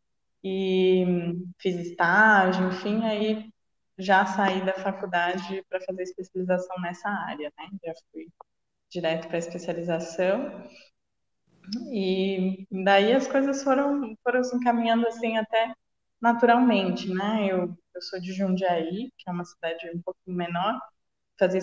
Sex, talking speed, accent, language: female, 125 wpm, Brazilian, Portuguese